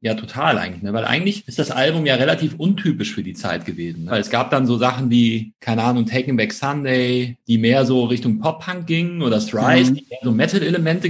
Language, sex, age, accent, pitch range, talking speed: German, male, 40-59, German, 120-160 Hz, 210 wpm